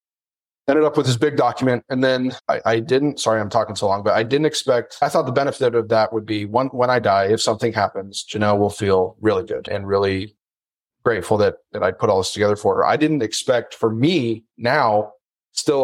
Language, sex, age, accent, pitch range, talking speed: English, male, 30-49, American, 105-125 Hz, 225 wpm